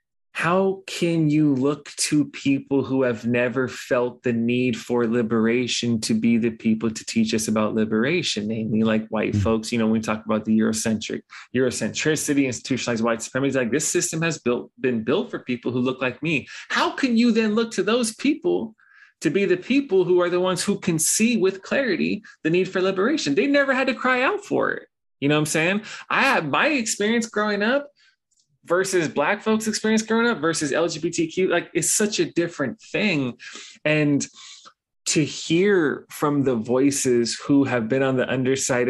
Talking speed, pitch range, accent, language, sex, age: 190 wpm, 125-180 Hz, American, English, male, 20-39